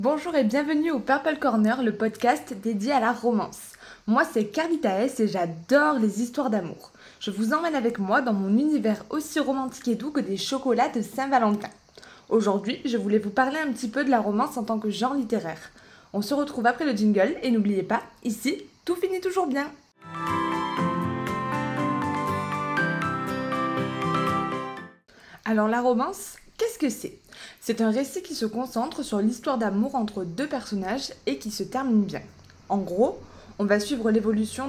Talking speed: 170 wpm